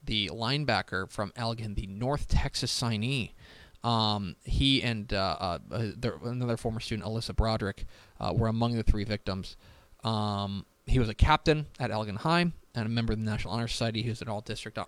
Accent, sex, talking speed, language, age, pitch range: American, male, 180 wpm, English, 20-39, 100-125 Hz